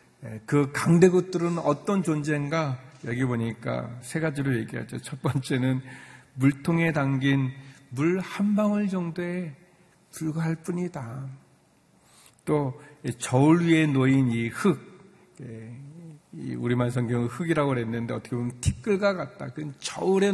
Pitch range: 130-180 Hz